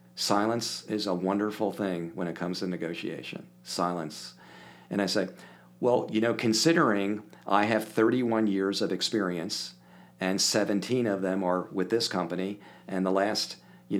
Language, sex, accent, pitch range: English, male, American, 85-105 Hz